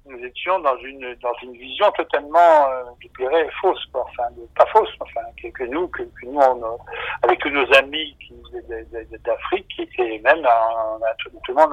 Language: French